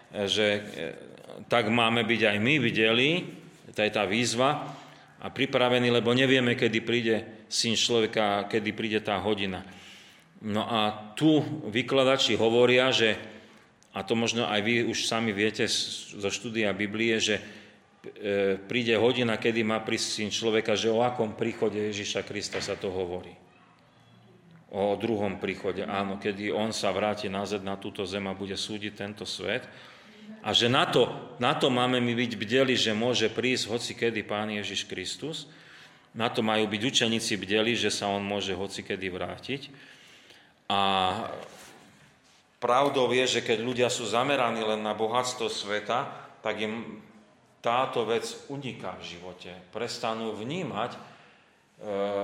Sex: male